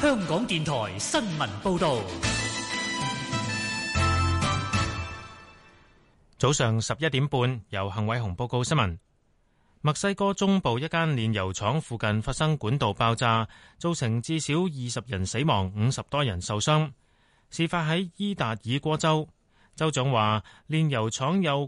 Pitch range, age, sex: 110-155 Hz, 30-49, male